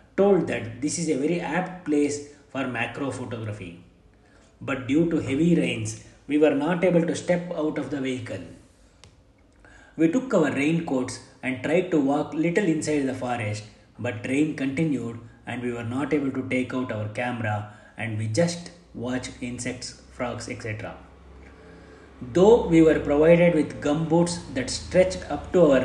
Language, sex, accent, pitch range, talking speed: Kannada, male, native, 115-155 Hz, 160 wpm